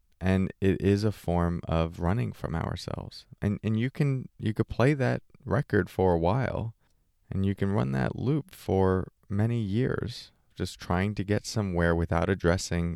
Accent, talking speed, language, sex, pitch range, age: American, 170 wpm, English, male, 80-100 Hz, 30-49